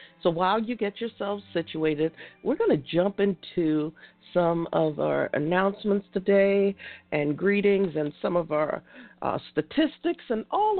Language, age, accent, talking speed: English, 50-69, American, 145 wpm